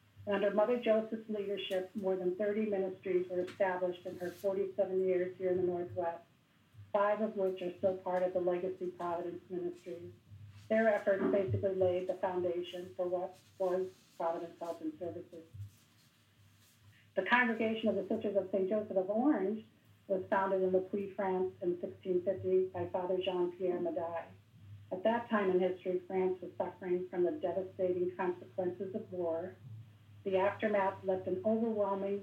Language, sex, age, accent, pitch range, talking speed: English, female, 50-69, American, 170-195 Hz, 155 wpm